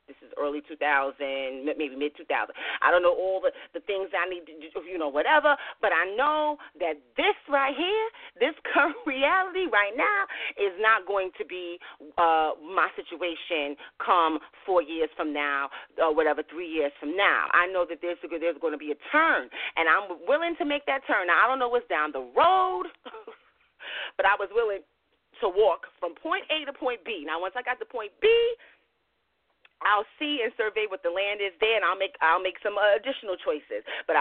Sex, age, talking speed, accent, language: female, 40-59, 205 wpm, American, English